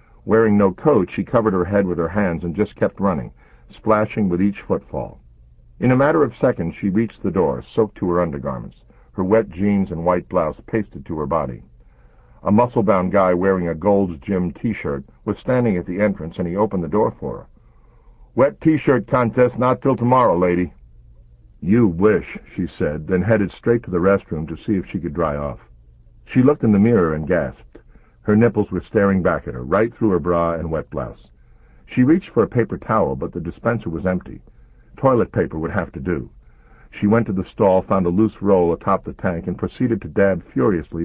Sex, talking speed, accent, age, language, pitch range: male, 205 wpm, American, 60-79, English, 80-105 Hz